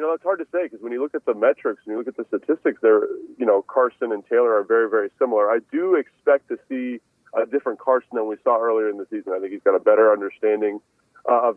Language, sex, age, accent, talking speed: English, male, 30-49, American, 270 wpm